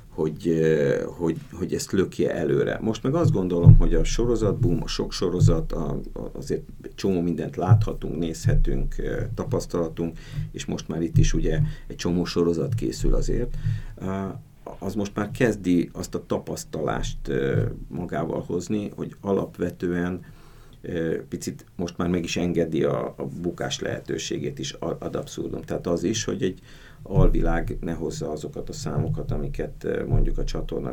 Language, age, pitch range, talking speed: Hungarian, 50-69, 80-115 Hz, 140 wpm